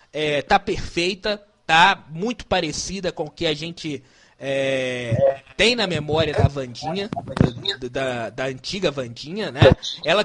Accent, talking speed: Brazilian, 125 wpm